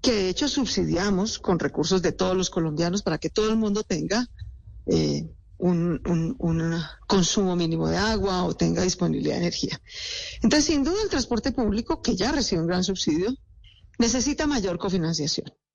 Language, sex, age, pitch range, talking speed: Spanish, female, 40-59, 185-275 Hz, 170 wpm